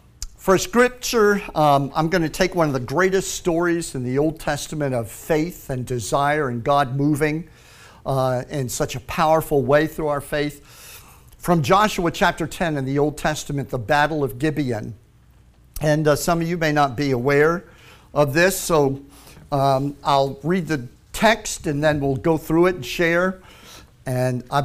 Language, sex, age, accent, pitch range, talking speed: English, male, 50-69, American, 135-175 Hz, 175 wpm